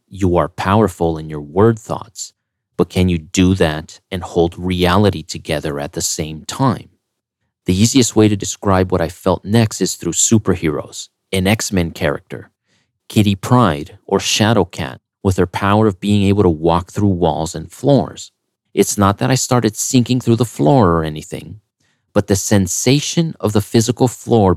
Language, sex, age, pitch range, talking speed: English, male, 30-49, 90-110 Hz, 170 wpm